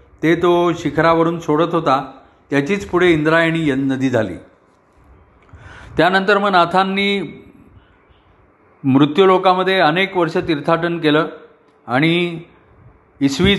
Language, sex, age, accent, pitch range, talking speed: Marathi, male, 40-59, native, 130-175 Hz, 90 wpm